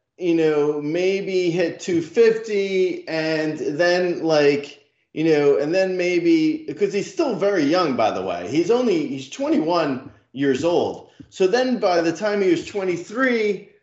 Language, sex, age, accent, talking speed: English, male, 30-49, American, 150 wpm